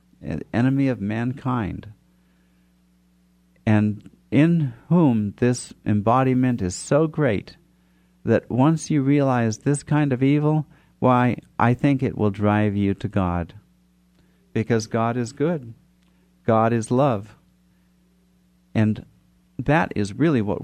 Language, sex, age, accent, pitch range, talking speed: English, male, 50-69, American, 95-130 Hz, 115 wpm